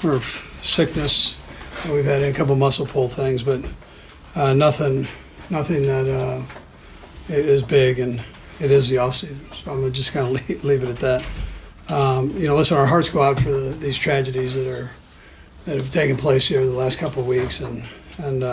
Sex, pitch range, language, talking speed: male, 125-140 Hz, English, 190 wpm